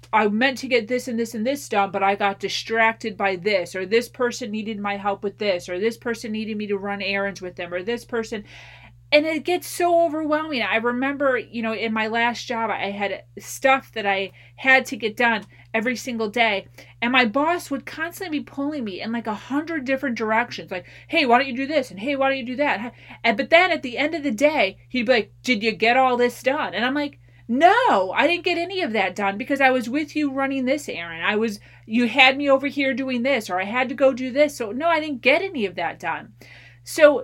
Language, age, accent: English, 30-49, American